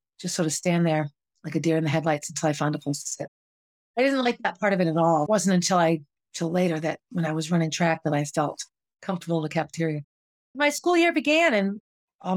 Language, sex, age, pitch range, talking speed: English, female, 40-59, 160-210 Hz, 250 wpm